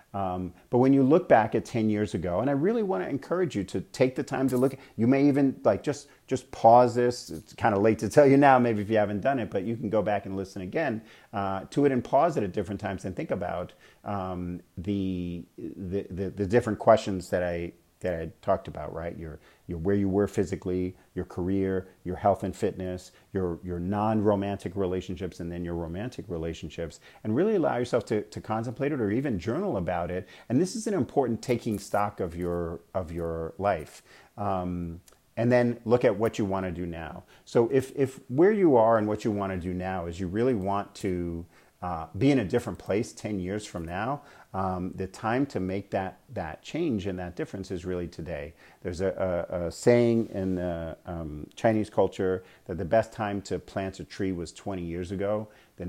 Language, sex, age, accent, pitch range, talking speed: English, male, 40-59, American, 90-115 Hz, 215 wpm